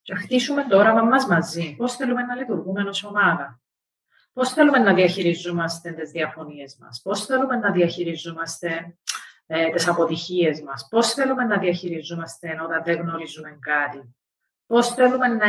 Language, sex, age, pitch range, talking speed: Greek, female, 40-59, 165-225 Hz, 145 wpm